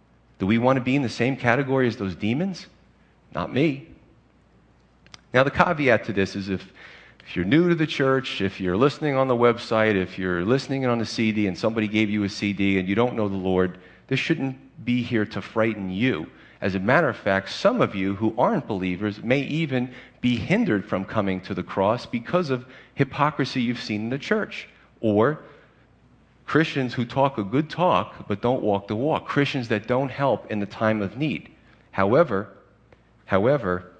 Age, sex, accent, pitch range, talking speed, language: 40-59, male, American, 95-130 Hz, 190 wpm, English